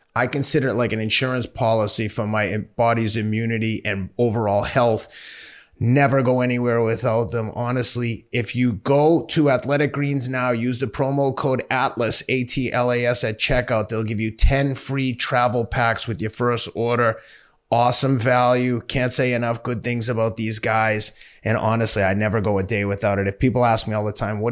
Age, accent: 30-49, American